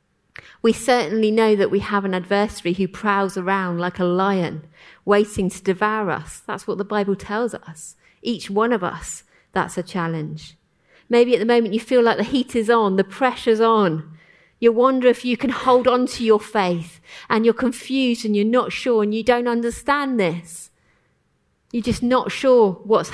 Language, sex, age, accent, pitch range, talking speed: English, female, 30-49, British, 180-235 Hz, 185 wpm